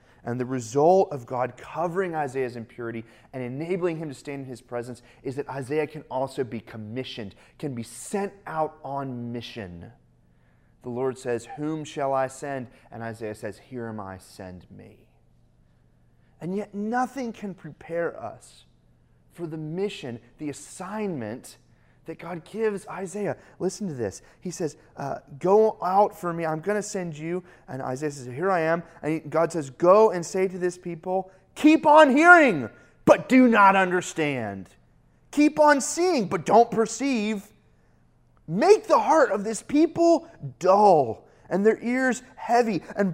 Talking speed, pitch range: 160 wpm, 140-235 Hz